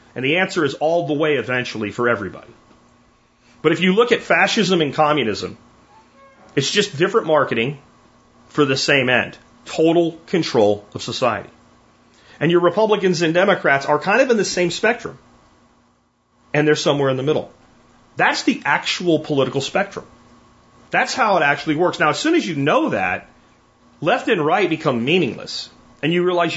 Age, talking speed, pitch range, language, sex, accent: 40-59, 165 wpm, 130-175 Hz, English, male, American